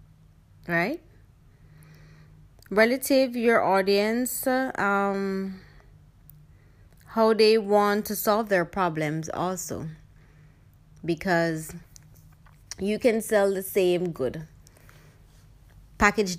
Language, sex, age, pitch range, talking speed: English, female, 20-39, 165-215 Hz, 75 wpm